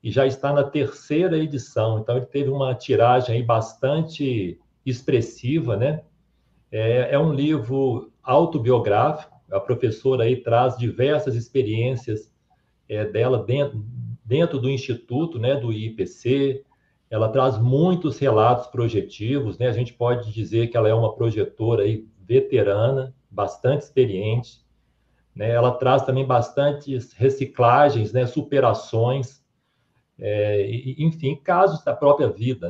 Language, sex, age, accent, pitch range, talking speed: Portuguese, male, 40-59, Brazilian, 115-140 Hz, 125 wpm